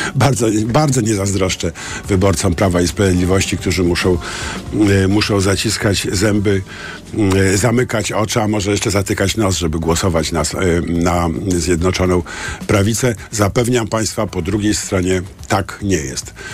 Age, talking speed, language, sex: 50-69, 125 wpm, Polish, male